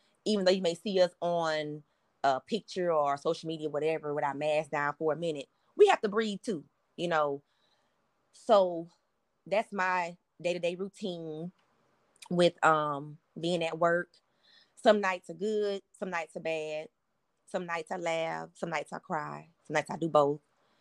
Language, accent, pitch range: English, American, 150-185 Hz